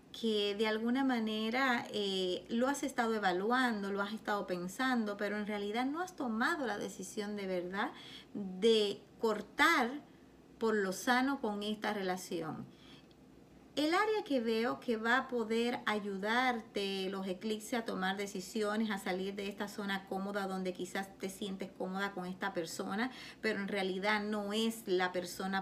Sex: female